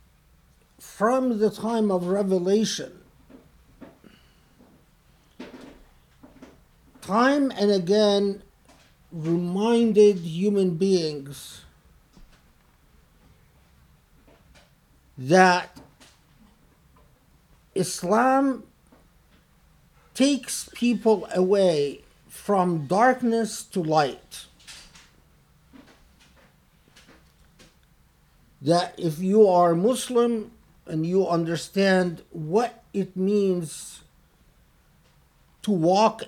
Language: English